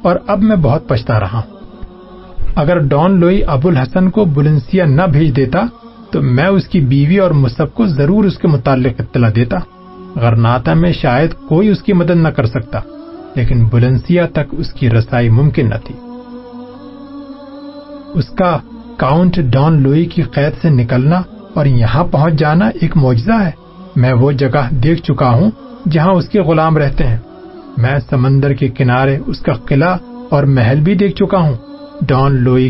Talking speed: 170 wpm